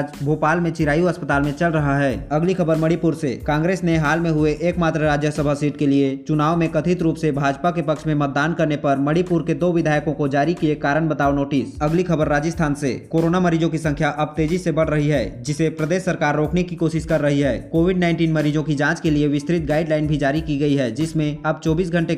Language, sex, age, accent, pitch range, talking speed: Hindi, male, 20-39, native, 155-170 Hz, 230 wpm